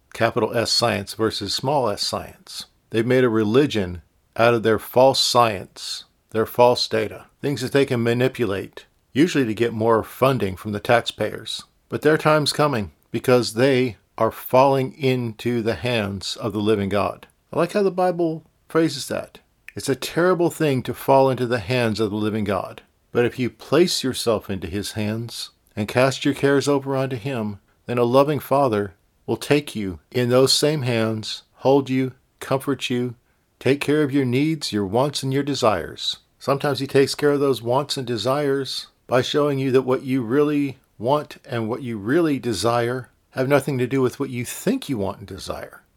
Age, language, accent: 50-69, English, American